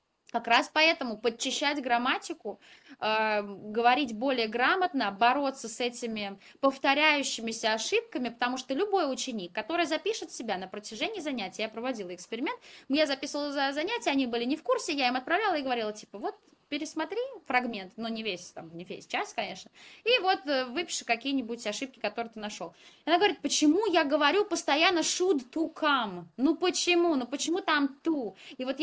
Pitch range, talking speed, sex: 220-315 Hz, 160 wpm, female